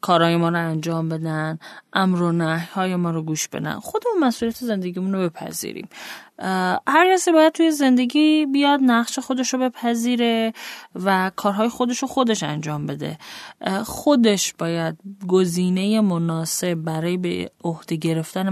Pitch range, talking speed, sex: 170-240 Hz, 135 wpm, female